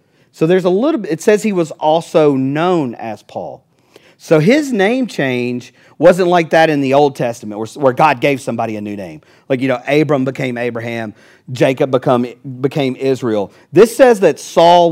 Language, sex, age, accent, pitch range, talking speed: English, male, 40-59, American, 125-170 Hz, 175 wpm